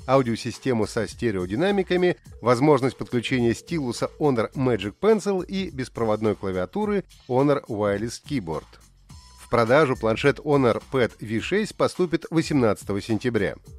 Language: Russian